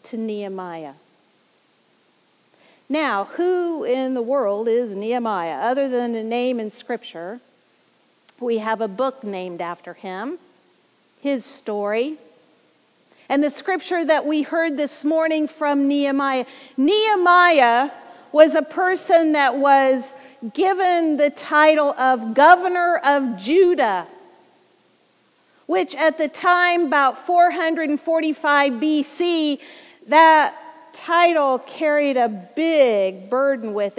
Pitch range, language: 260-335 Hz, English